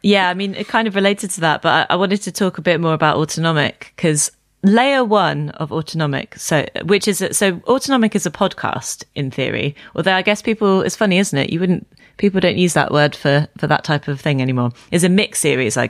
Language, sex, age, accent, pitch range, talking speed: English, female, 30-49, British, 155-200 Hz, 235 wpm